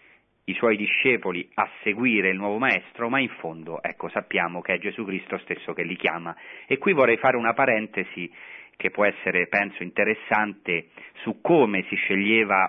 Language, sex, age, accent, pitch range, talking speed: Italian, male, 40-59, native, 95-125 Hz, 170 wpm